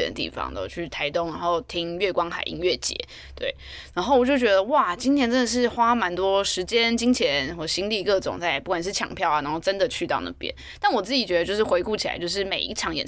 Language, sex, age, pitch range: Chinese, female, 20-39, 170-235 Hz